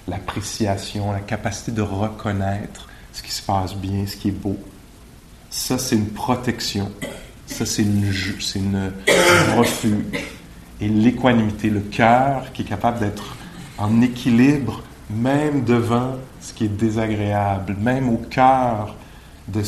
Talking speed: 135 wpm